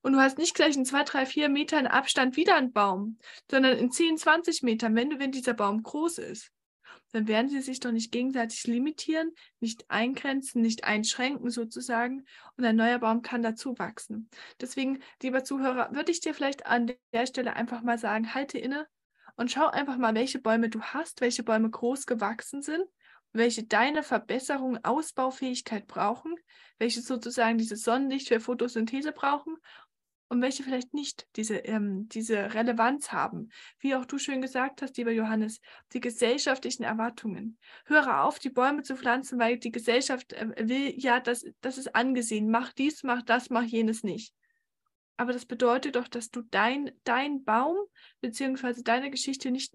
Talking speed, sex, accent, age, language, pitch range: 170 wpm, female, German, 10-29, German, 230-275 Hz